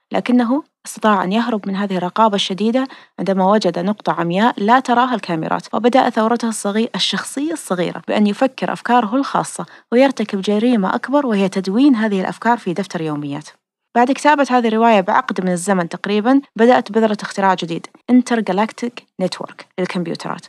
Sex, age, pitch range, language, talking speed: female, 30-49, 195-245 Hz, Arabic, 145 wpm